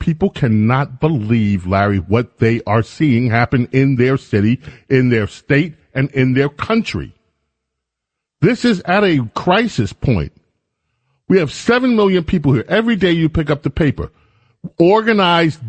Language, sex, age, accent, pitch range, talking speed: English, male, 40-59, American, 125-195 Hz, 150 wpm